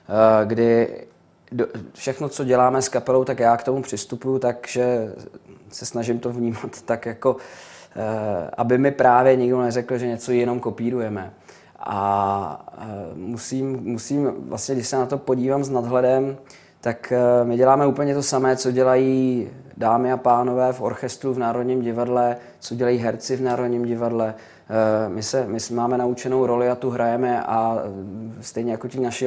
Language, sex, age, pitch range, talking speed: Czech, male, 20-39, 120-135 Hz, 150 wpm